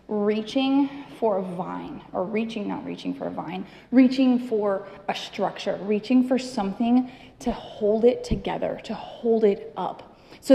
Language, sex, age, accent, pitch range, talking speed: English, female, 20-39, American, 200-255 Hz, 155 wpm